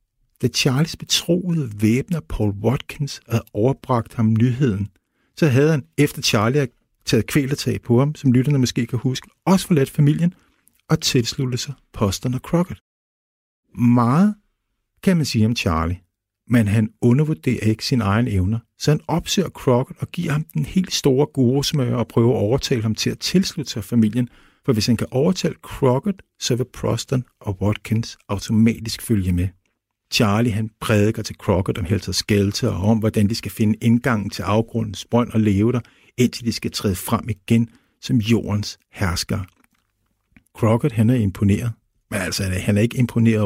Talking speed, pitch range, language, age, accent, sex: 165 wpm, 105-130 Hz, Danish, 50-69, native, male